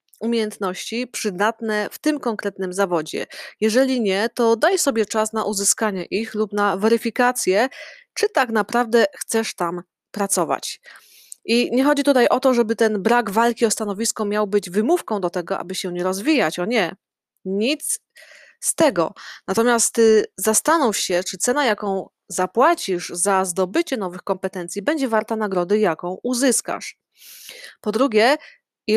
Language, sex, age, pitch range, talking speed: Polish, female, 20-39, 195-250 Hz, 145 wpm